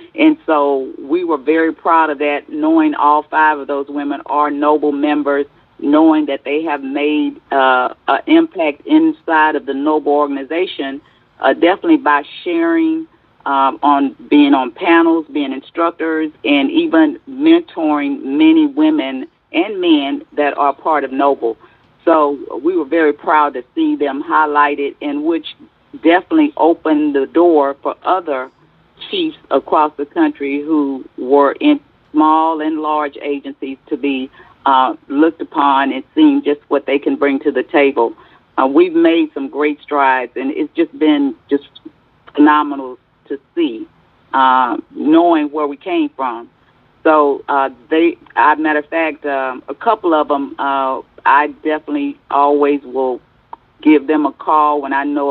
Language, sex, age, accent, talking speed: English, female, 40-59, American, 155 wpm